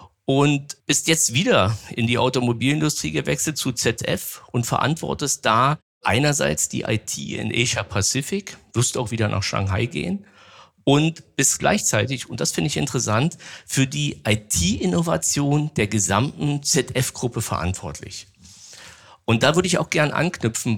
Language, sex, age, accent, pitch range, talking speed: German, male, 50-69, German, 105-145 Hz, 135 wpm